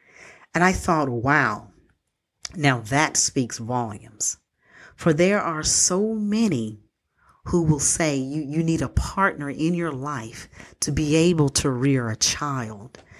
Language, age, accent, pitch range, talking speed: English, 40-59, American, 120-175 Hz, 140 wpm